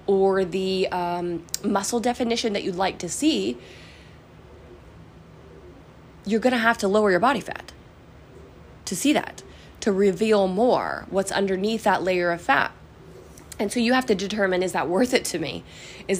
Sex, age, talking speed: female, 20-39, 165 wpm